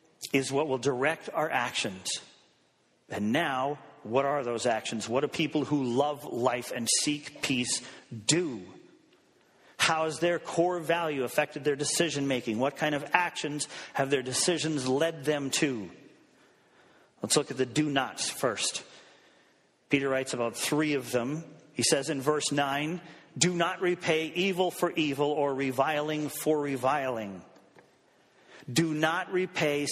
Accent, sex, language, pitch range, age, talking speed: American, male, English, 135-165 Hz, 40-59, 140 wpm